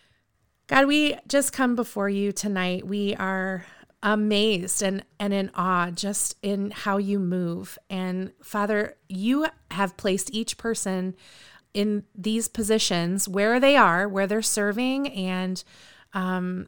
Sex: female